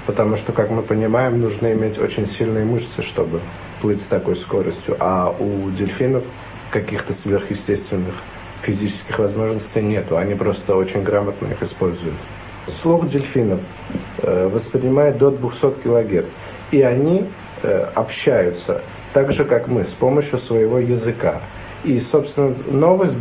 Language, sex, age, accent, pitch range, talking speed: Russian, male, 50-69, native, 105-130 Hz, 130 wpm